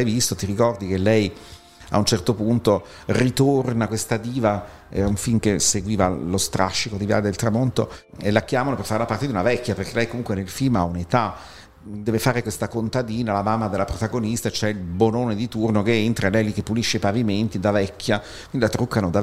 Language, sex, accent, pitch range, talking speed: Italian, male, native, 100-120 Hz, 210 wpm